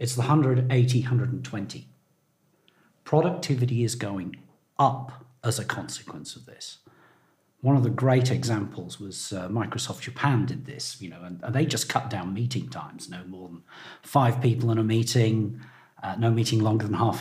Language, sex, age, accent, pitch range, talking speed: English, male, 40-59, British, 115-145 Hz, 165 wpm